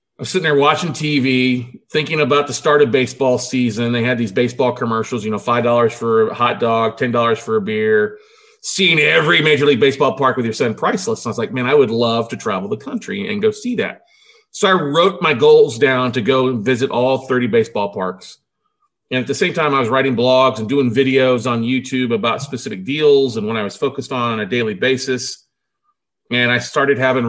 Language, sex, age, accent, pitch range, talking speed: English, male, 40-59, American, 125-175 Hz, 215 wpm